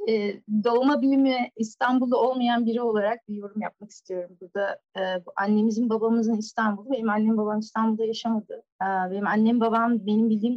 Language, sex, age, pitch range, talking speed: Turkish, female, 30-49, 210-245 Hz, 160 wpm